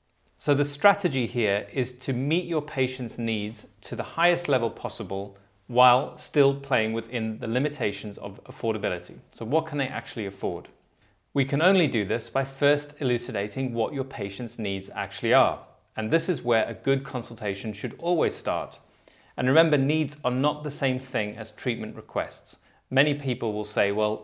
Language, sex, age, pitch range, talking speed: English, male, 30-49, 110-140 Hz, 170 wpm